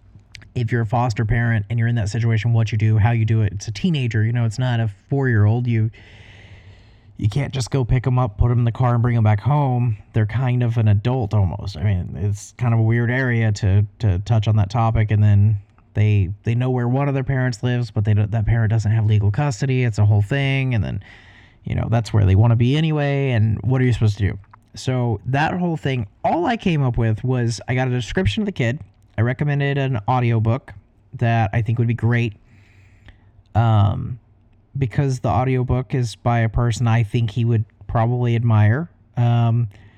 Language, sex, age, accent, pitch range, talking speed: English, male, 30-49, American, 105-125 Hz, 220 wpm